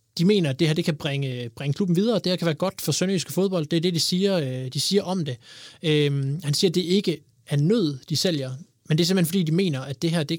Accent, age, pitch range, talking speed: native, 20-39, 140-180 Hz, 290 wpm